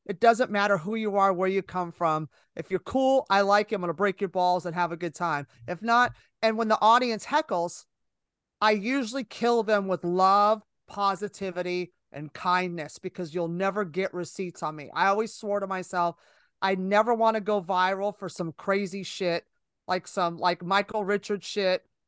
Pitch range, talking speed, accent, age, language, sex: 180-215 Hz, 195 wpm, American, 30-49, English, male